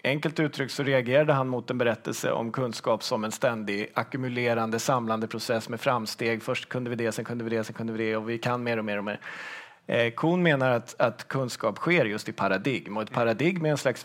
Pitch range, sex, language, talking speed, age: 115-145 Hz, male, Swedish, 230 wpm, 30-49